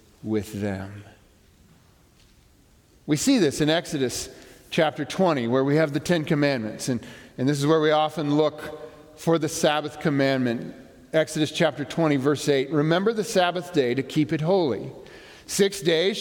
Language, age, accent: English, 50-69, American